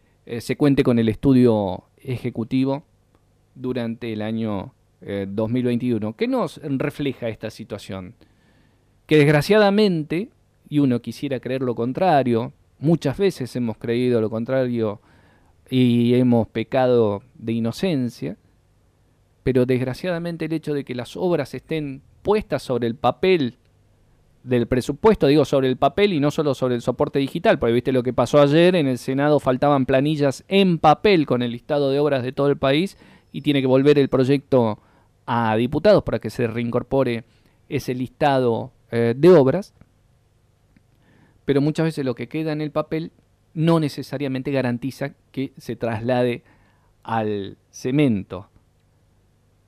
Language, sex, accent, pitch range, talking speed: Spanish, male, Argentinian, 115-140 Hz, 145 wpm